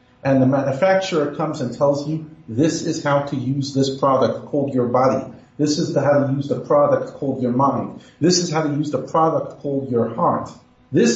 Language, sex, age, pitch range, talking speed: English, male, 40-59, 130-170 Hz, 205 wpm